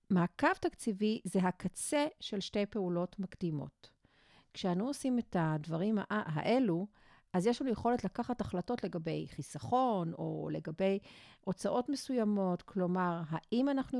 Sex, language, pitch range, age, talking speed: female, Hebrew, 180-245 Hz, 50-69, 120 wpm